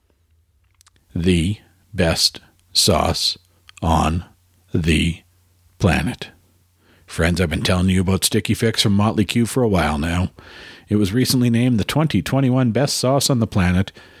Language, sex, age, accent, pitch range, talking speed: English, male, 50-69, American, 90-120 Hz, 135 wpm